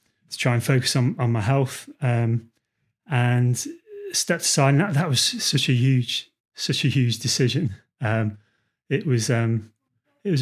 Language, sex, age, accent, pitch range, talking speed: English, male, 30-49, British, 120-145 Hz, 165 wpm